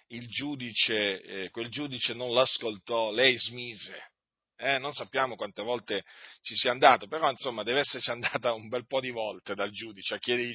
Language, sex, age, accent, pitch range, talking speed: Italian, male, 40-59, native, 110-160 Hz, 175 wpm